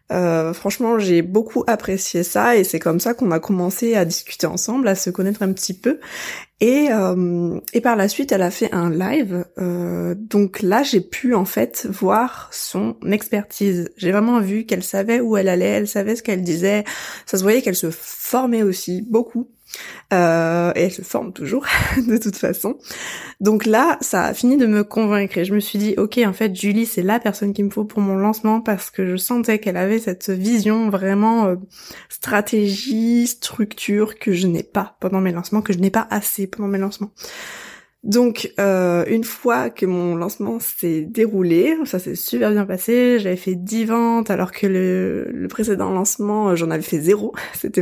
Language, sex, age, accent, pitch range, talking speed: French, female, 20-39, French, 185-225 Hz, 195 wpm